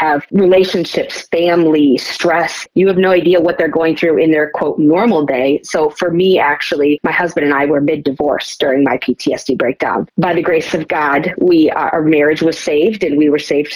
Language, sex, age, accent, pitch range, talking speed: English, female, 30-49, American, 150-180 Hz, 195 wpm